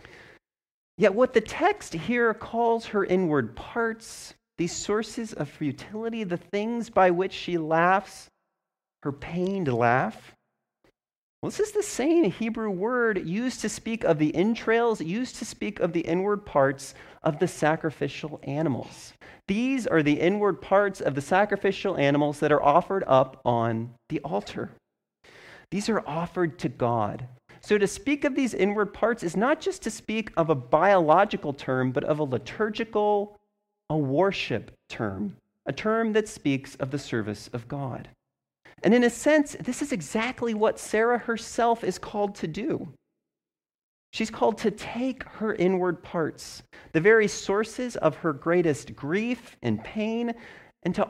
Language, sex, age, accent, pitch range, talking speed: English, male, 30-49, American, 155-225 Hz, 155 wpm